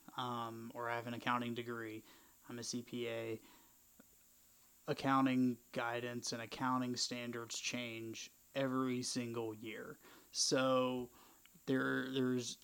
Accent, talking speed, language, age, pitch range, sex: American, 105 wpm, English, 20-39, 120-130 Hz, male